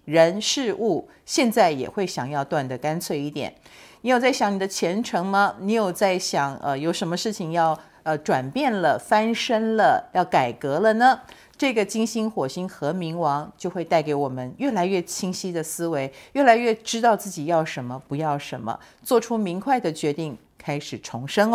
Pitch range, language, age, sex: 155-210 Hz, Chinese, 50-69, female